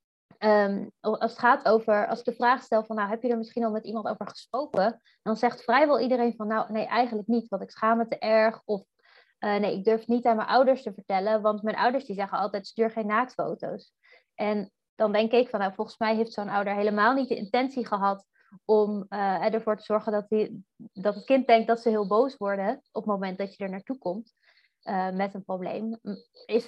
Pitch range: 205-235 Hz